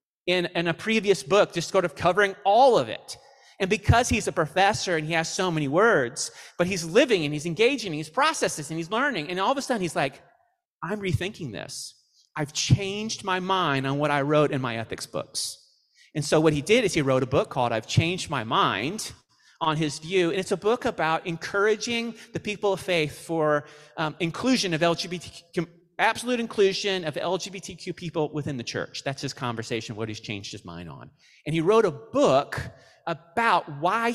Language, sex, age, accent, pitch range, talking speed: English, male, 30-49, American, 150-200 Hz, 200 wpm